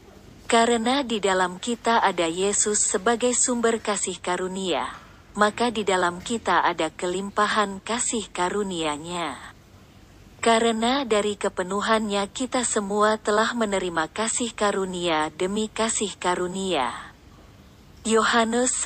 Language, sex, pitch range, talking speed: Indonesian, female, 180-230 Hz, 100 wpm